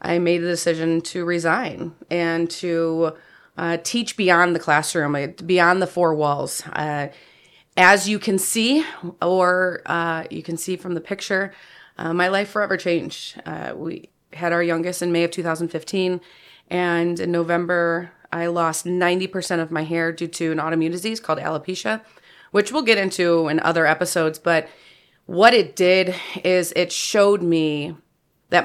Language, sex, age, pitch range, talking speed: English, female, 30-49, 160-180 Hz, 160 wpm